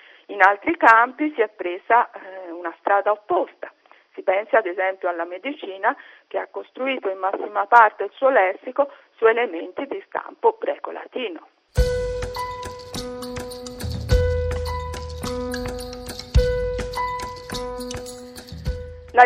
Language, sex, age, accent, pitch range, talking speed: Italian, female, 50-69, native, 180-300 Hz, 95 wpm